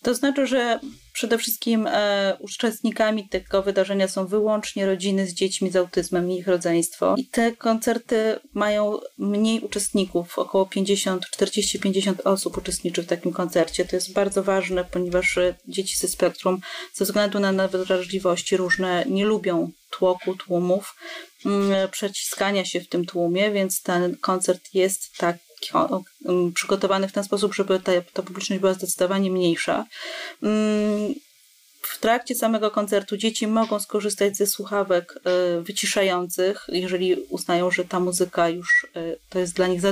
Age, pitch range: 30-49, 185-220 Hz